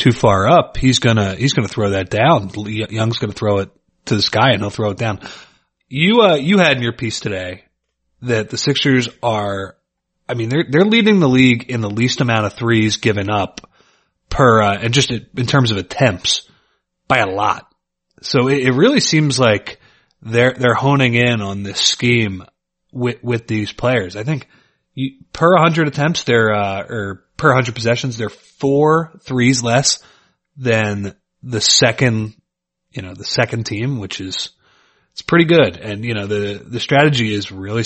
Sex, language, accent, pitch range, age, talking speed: male, English, American, 105-130 Hz, 30-49, 180 wpm